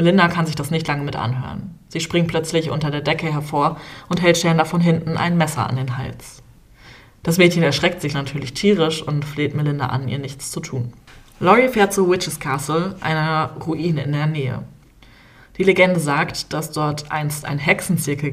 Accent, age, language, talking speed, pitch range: German, 20-39, German, 185 wpm, 135-165 Hz